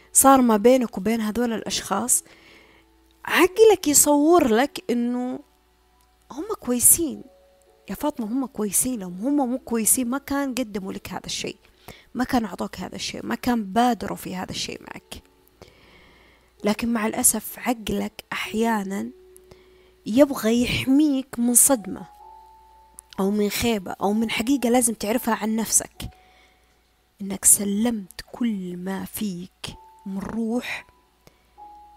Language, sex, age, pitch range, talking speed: Arabic, female, 20-39, 210-275 Hz, 120 wpm